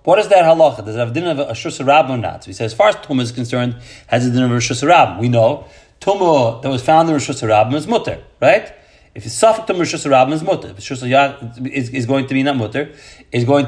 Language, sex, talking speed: English, male, 250 wpm